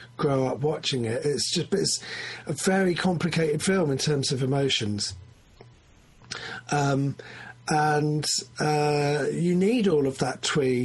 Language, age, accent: English, 40-59, British